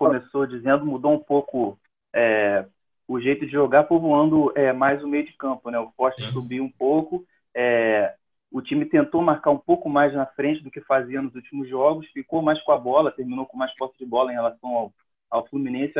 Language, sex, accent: Portuguese, male, Brazilian